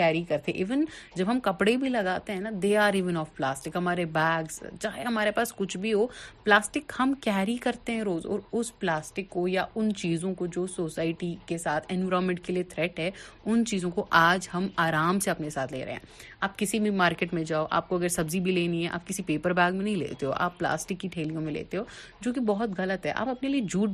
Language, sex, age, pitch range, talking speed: Urdu, female, 30-49, 175-230 Hz, 220 wpm